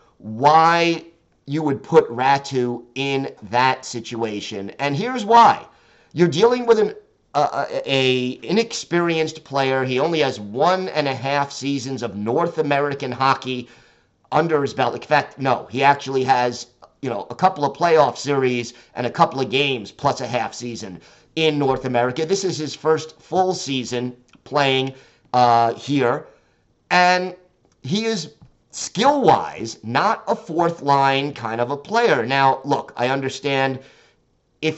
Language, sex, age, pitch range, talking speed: English, male, 50-69, 125-155 Hz, 140 wpm